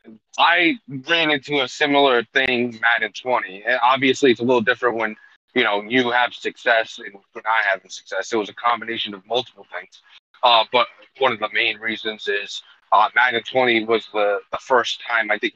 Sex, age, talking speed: male, 20-39, 195 wpm